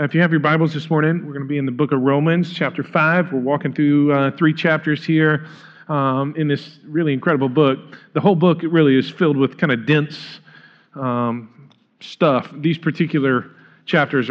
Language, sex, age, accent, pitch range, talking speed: English, male, 40-59, American, 130-155 Hz, 195 wpm